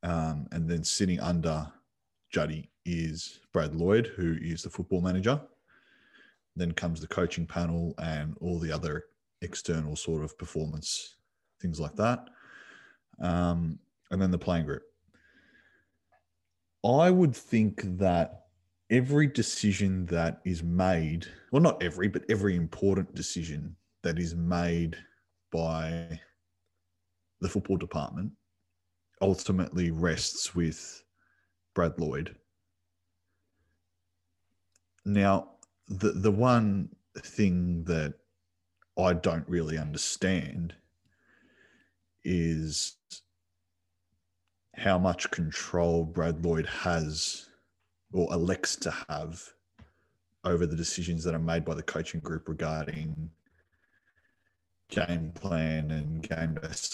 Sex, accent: male, Australian